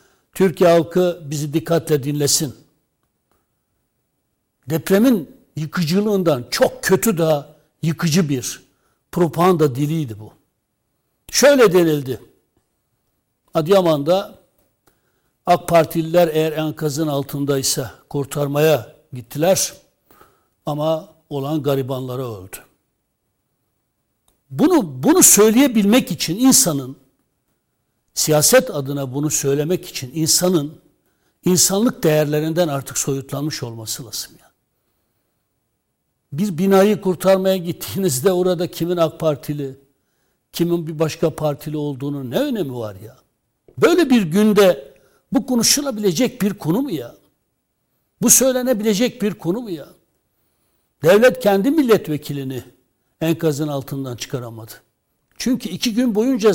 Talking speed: 95 wpm